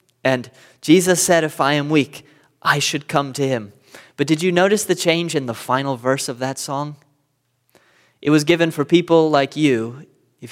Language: English